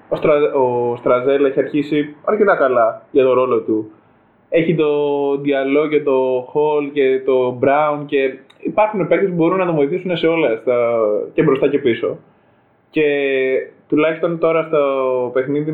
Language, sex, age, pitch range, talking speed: Greek, male, 20-39, 125-165 Hz, 155 wpm